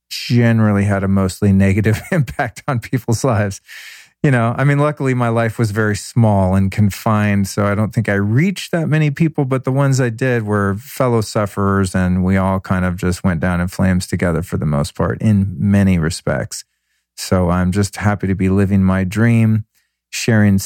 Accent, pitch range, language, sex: American, 95-115 Hz, English, male